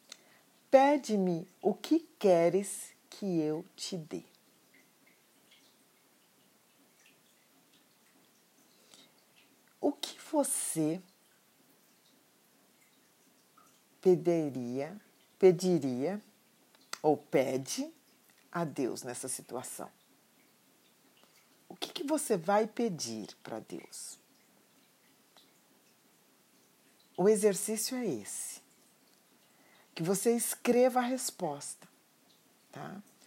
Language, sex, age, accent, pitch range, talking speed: Portuguese, female, 50-69, Brazilian, 165-235 Hz, 65 wpm